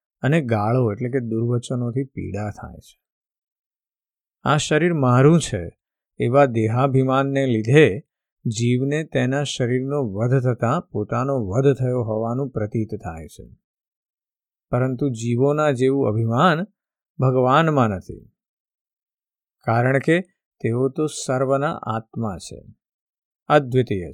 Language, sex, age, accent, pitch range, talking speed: Gujarati, male, 50-69, native, 115-150 Hz, 85 wpm